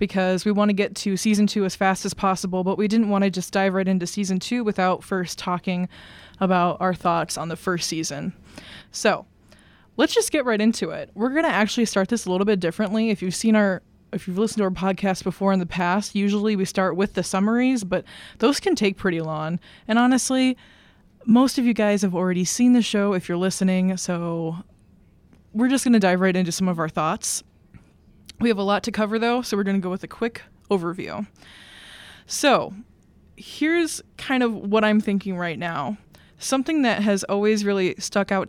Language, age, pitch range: English, 20-39, 185-225 Hz